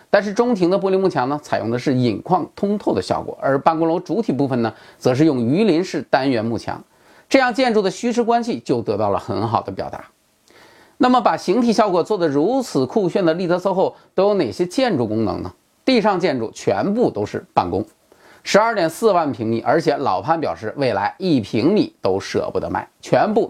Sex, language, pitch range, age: male, Chinese, 125-210 Hz, 30-49